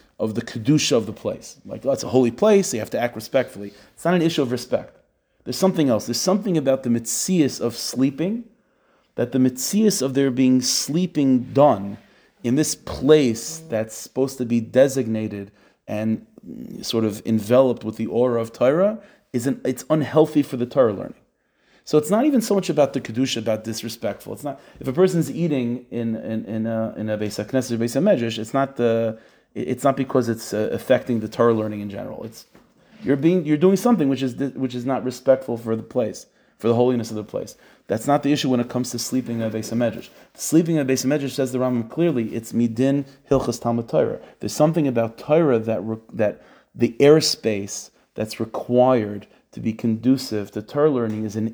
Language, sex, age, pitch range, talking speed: English, male, 30-49, 115-145 Hz, 200 wpm